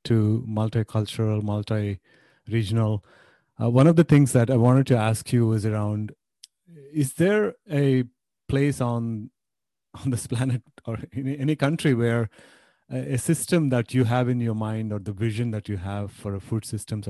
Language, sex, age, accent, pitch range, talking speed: English, male, 30-49, Indian, 110-130 Hz, 160 wpm